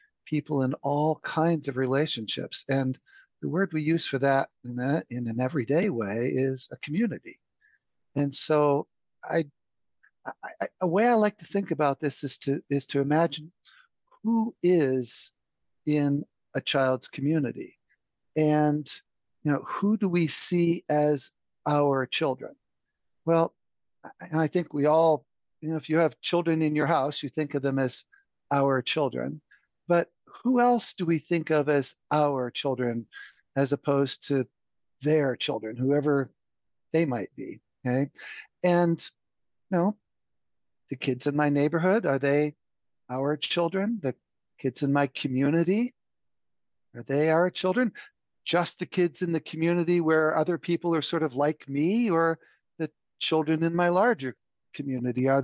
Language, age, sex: English, 50-69, male